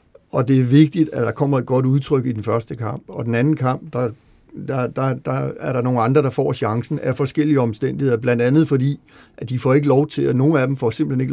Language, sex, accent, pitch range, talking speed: Danish, male, native, 120-145 Hz, 255 wpm